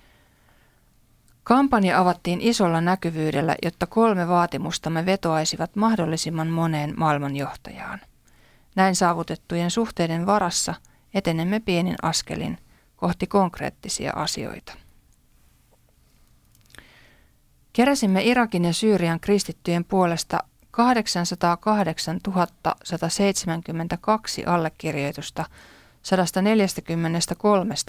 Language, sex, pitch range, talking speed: Finnish, female, 165-200 Hz, 65 wpm